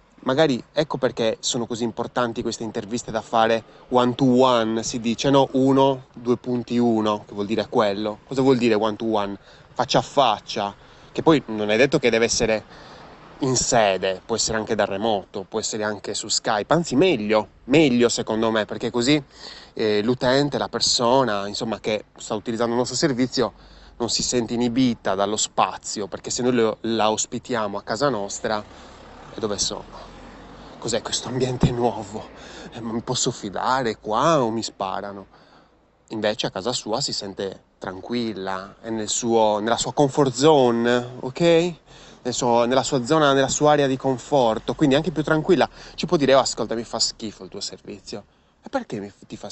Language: Italian